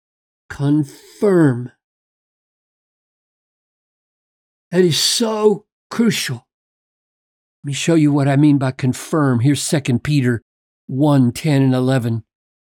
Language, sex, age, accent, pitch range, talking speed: English, male, 50-69, American, 130-180 Hz, 100 wpm